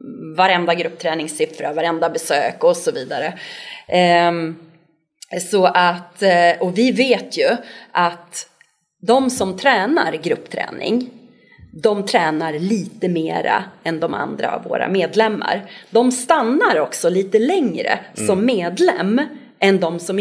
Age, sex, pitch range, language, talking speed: 30-49, female, 170-235 Hz, Swedish, 105 wpm